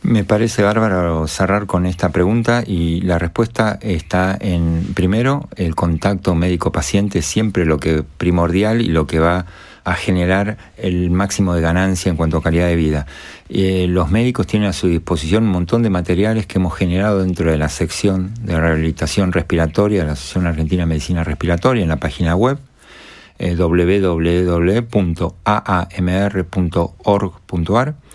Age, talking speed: 50-69, 145 wpm